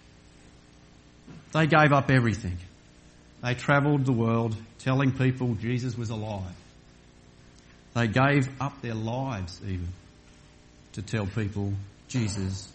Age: 50-69